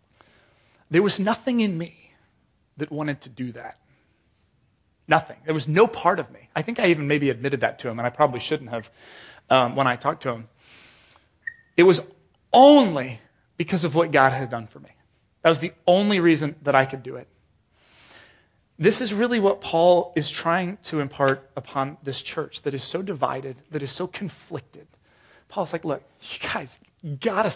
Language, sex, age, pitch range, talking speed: English, male, 30-49, 135-185 Hz, 185 wpm